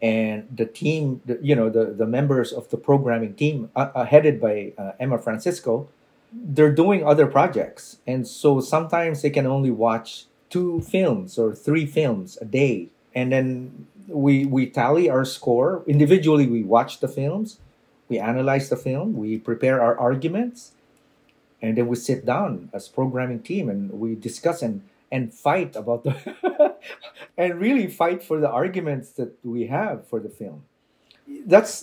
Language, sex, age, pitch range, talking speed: English, male, 40-59, 120-155 Hz, 165 wpm